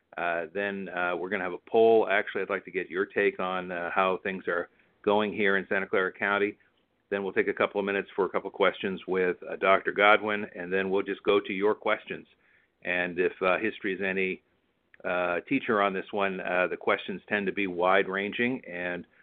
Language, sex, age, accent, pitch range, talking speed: English, male, 50-69, American, 90-105 Hz, 210 wpm